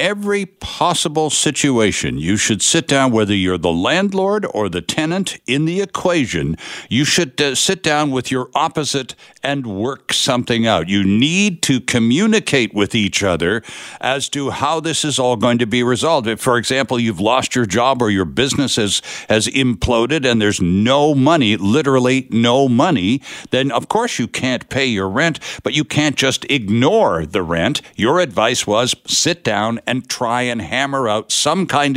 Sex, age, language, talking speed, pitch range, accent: male, 60-79, English, 175 wpm, 110-155 Hz, American